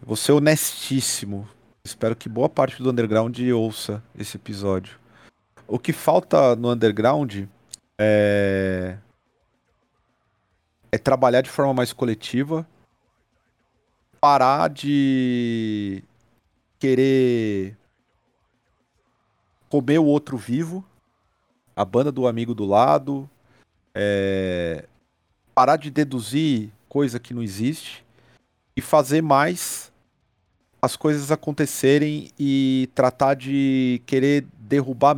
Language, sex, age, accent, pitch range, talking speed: Portuguese, male, 40-59, Brazilian, 110-140 Hz, 95 wpm